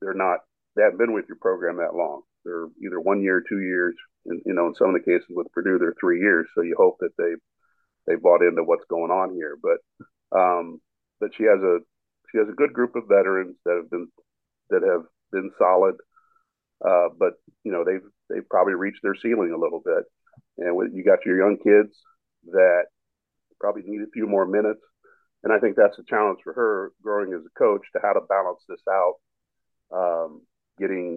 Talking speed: 210 wpm